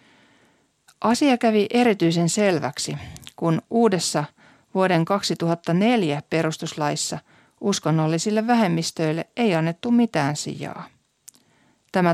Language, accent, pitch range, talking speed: Finnish, native, 160-210 Hz, 80 wpm